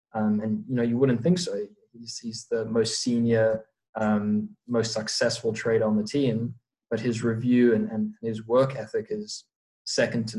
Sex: male